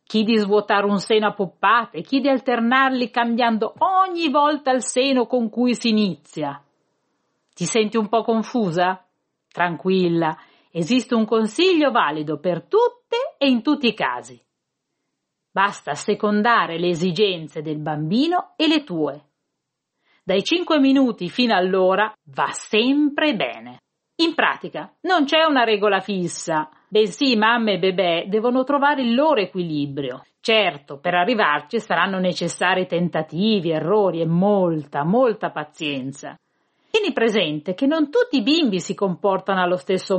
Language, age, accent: Italian, 40-59, native